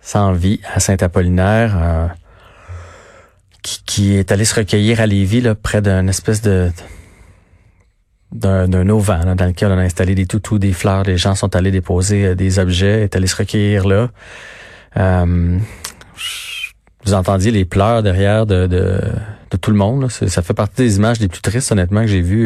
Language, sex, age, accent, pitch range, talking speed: French, male, 30-49, Canadian, 90-105 Hz, 185 wpm